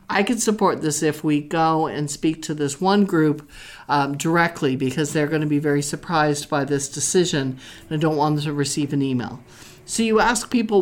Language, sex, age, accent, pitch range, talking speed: English, male, 50-69, American, 145-170 Hz, 210 wpm